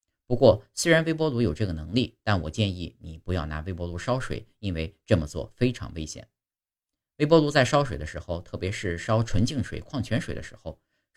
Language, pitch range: Chinese, 90-130 Hz